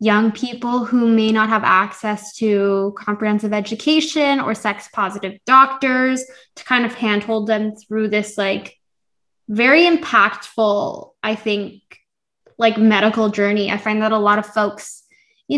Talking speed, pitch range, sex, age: 145 wpm, 215-255 Hz, female, 10-29